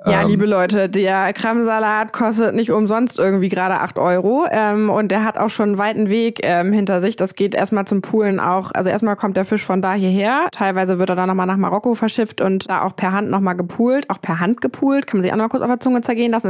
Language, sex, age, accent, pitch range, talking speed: German, female, 20-39, German, 185-220 Hz, 245 wpm